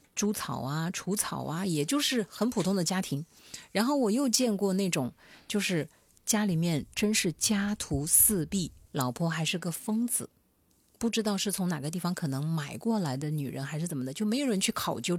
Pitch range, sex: 155-205 Hz, female